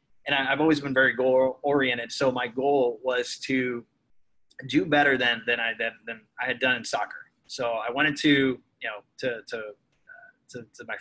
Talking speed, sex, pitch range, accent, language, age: 190 wpm, male, 120-145 Hz, American, English, 20-39